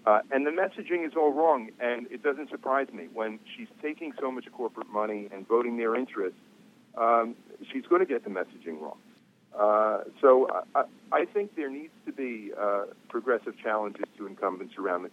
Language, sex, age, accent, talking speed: English, male, 50-69, American, 185 wpm